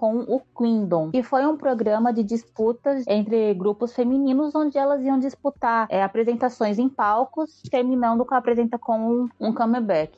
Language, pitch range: Portuguese, 210-255 Hz